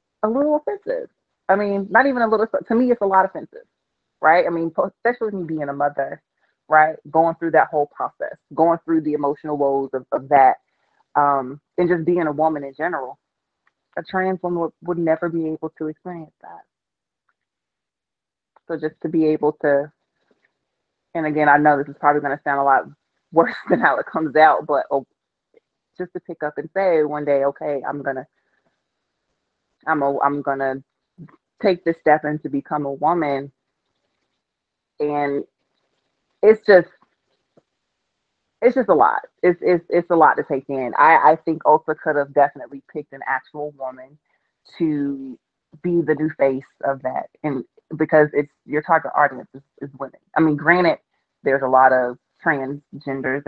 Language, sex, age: English, female, 30-49